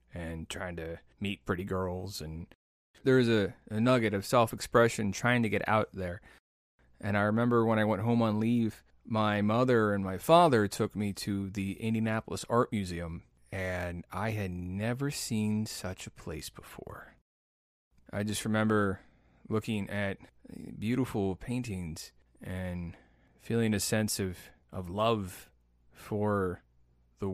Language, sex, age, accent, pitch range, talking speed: English, male, 20-39, American, 90-110 Hz, 145 wpm